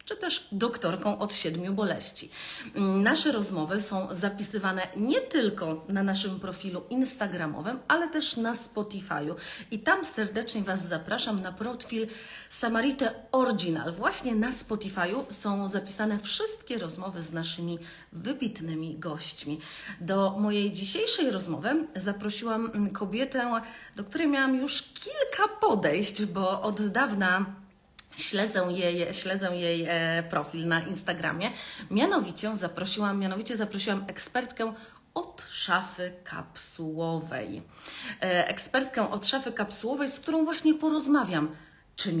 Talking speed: 115 wpm